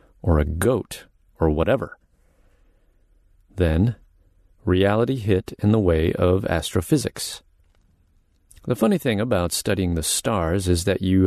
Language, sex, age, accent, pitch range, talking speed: English, male, 40-59, American, 85-110 Hz, 120 wpm